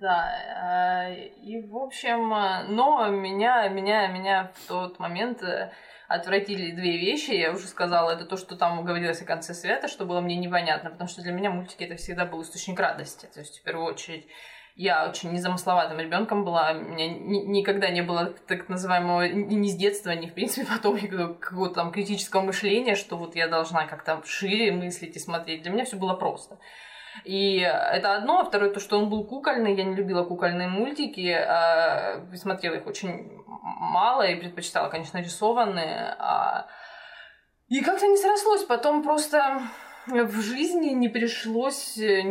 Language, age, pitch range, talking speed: Russian, 20-39, 175-225 Hz, 160 wpm